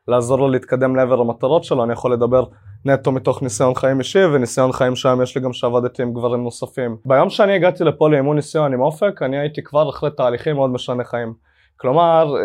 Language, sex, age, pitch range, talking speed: Hebrew, male, 20-39, 130-165 Hz, 200 wpm